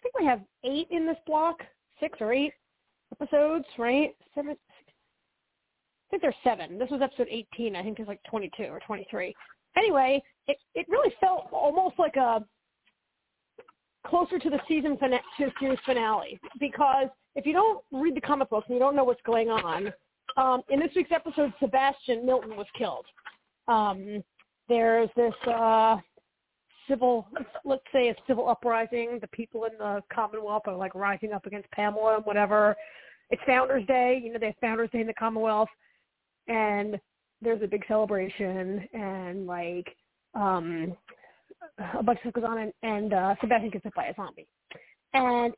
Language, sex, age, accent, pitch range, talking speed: English, female, 40-59, American, 220-280 Hz, 170 wpm